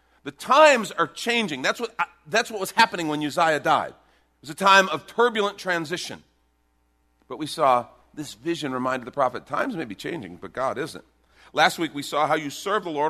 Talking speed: 195 wpm